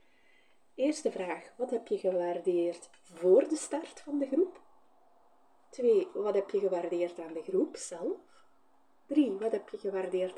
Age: 30-49